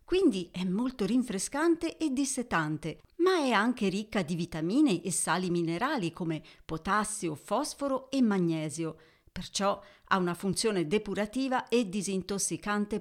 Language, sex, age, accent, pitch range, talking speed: Italian, female, 40-59, native, 165-250 Hz, 125 wpm